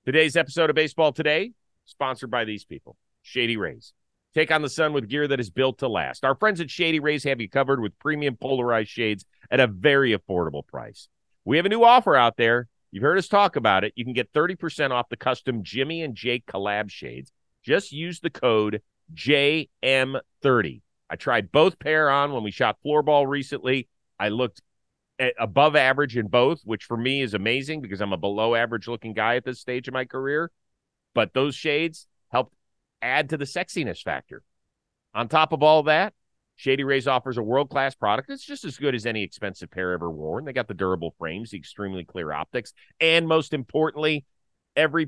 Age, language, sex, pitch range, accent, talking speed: 40-59, English, male, 110-155 Hz, American, 195 wpm